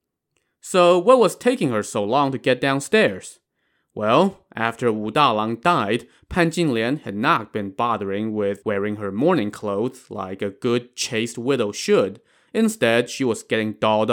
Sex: male